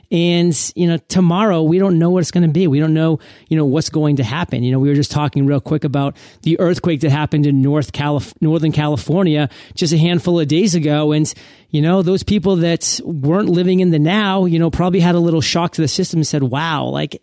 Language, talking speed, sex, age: English, 245 wpm, male, 30-49